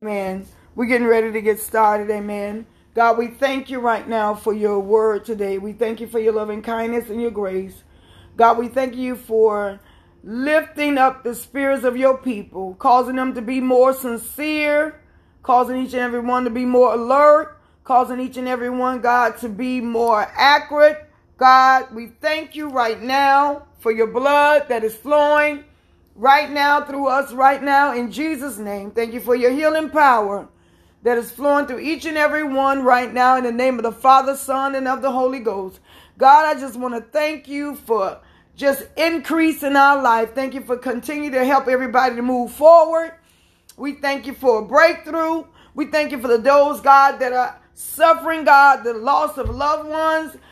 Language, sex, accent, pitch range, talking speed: English, female, American, 235-290 Hz, 185 wpm